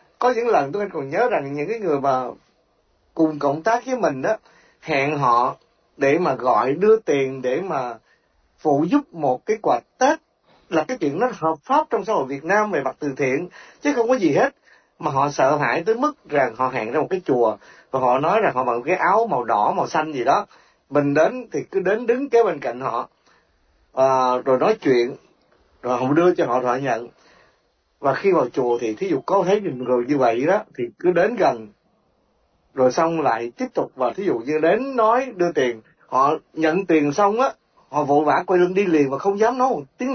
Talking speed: 220 wpm